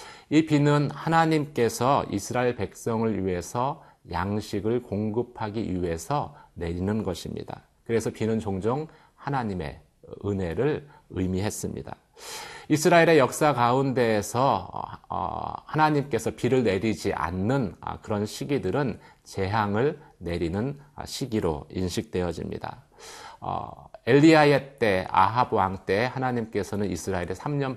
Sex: male